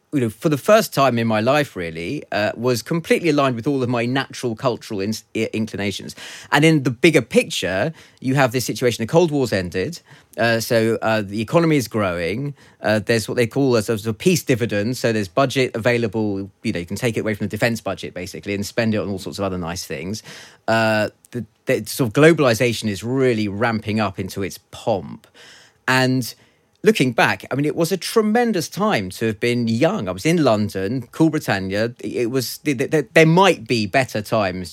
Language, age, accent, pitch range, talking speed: English, 30-49, British, 105-145 Hz, 205 wpm